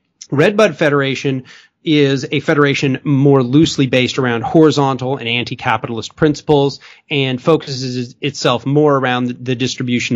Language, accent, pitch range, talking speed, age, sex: English, American, 115-145 Hz, 120 wpm, 30-49, male